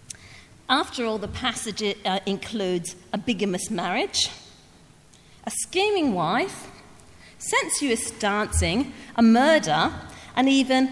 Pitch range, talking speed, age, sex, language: 170-255 Hz, 95 wpm, 40-59, female, English